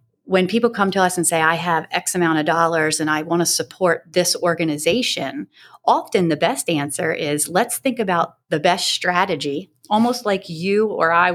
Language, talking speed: English, 190 wpm